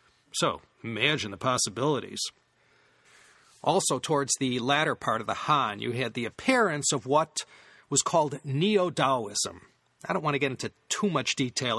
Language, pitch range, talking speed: English, 130-185 Hz, 155 wpm